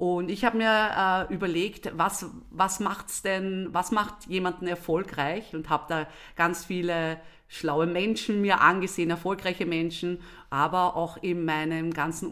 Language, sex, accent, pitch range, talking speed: German, female, German, 165-205 Hz, 145 wpm